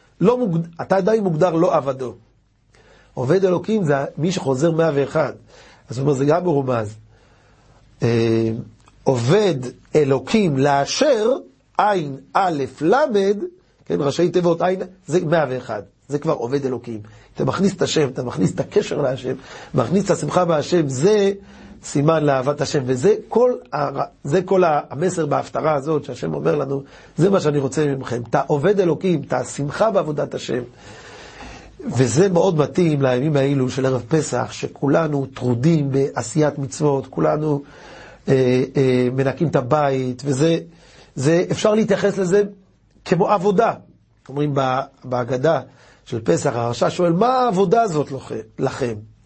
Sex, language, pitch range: male, Hebrew, 130-180 Hz